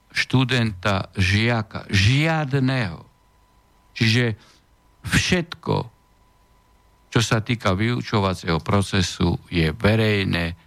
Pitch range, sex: 95-120 Hz, male